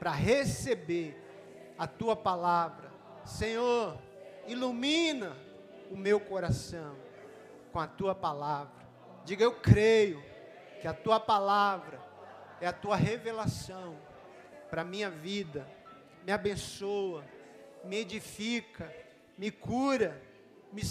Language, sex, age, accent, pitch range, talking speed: Portuguese, male, 40-59, Brazilian, 160-225 Hz, 105 wpm